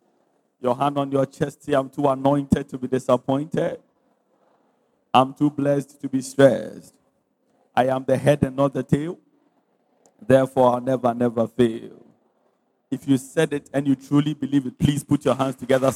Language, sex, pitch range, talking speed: English, male, 115-135 Hz, 170 wpm